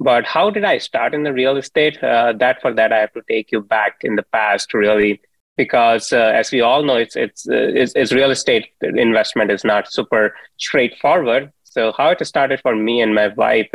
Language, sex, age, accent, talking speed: English, male, 30-49, Indian, 215 wpm